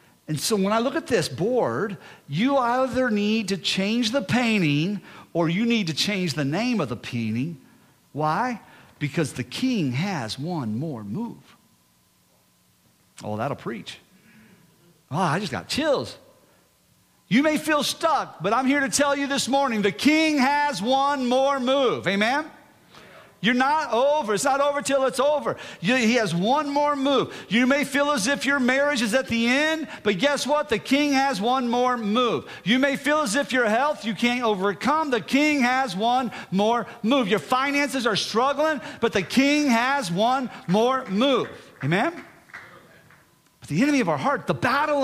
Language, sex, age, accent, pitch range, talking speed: English, male, 50-69, American, 195-280 Hz, 175 wpm